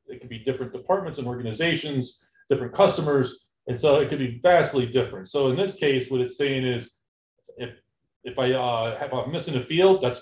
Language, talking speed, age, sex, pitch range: English, 200 wpm, 40-59, male, 120-155 Hz